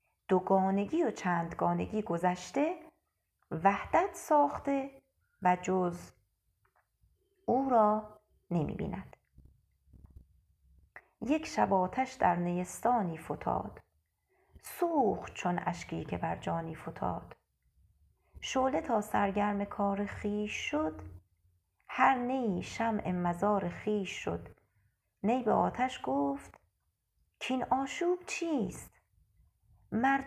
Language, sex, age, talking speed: Arabic, female, 30-49, 95 wpm